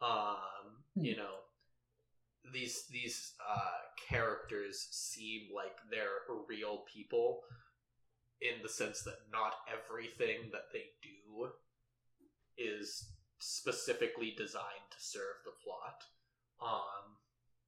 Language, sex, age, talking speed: English, male, 20-39, 100 wpm